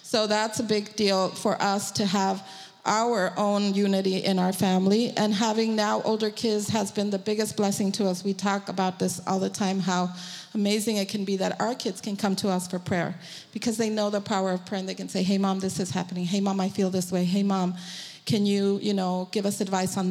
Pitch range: 190-215 Hz